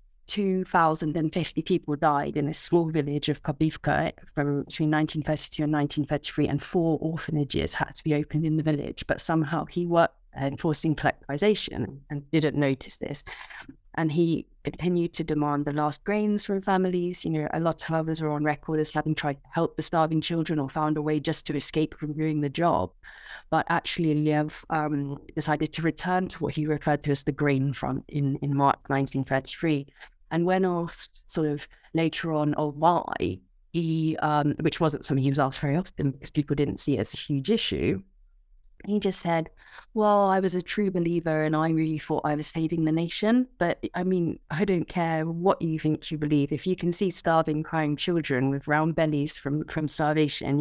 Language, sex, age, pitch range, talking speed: English, female, 30-49, 145-165 Hz, 195 wpm